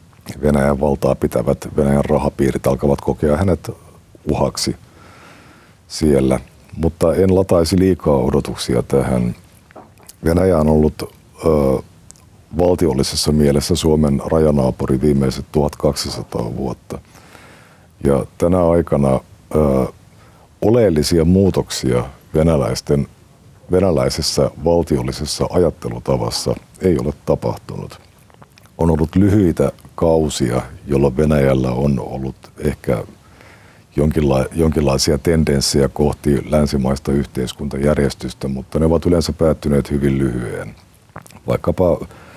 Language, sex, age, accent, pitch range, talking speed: Finnish, male, 50-69, native, 65-80 Hz, 85 wpm